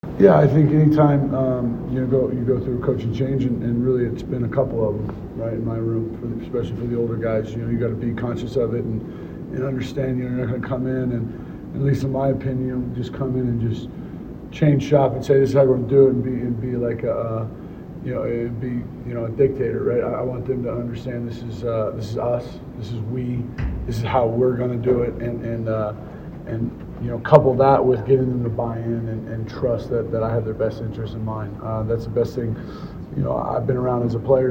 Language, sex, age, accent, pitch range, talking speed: English, male, 30-49, American, 115-130 Hz, 270 wpm